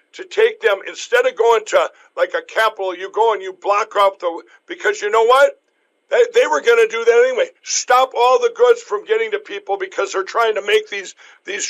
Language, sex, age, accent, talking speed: English, male, 60-79, American, 215 wpm